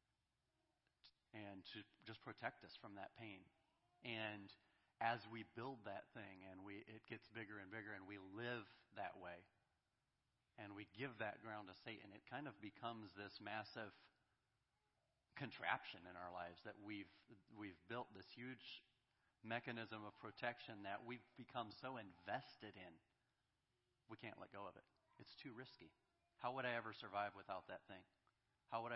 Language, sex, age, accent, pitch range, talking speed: English, male, 40-59, American, 100-120 Hz, 160 wpm